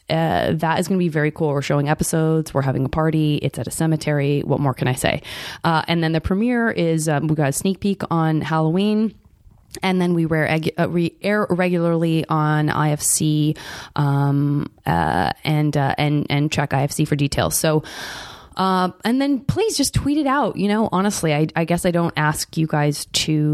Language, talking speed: English, 200 wpm